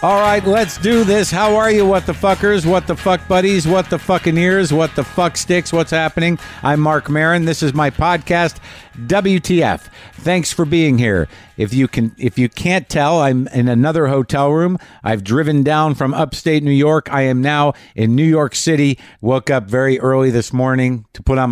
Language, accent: English, American